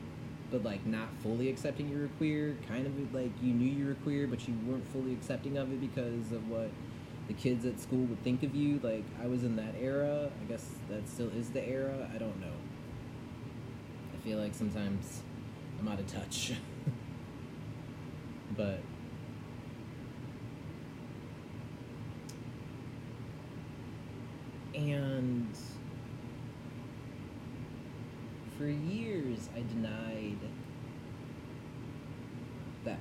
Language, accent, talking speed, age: English, American, 120 wpm, 20-39